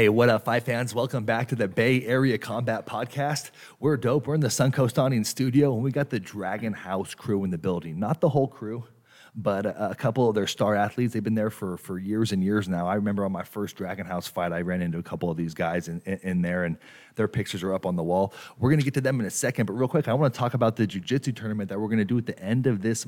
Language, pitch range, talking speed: English, 95-120 Hz, 285 wpm